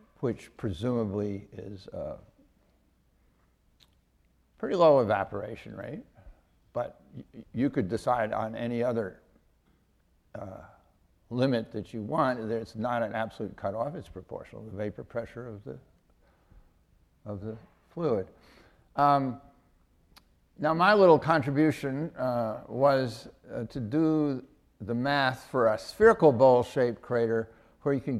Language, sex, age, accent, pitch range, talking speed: English, male, 60-79, American, 105-135 Hz, 120 wpm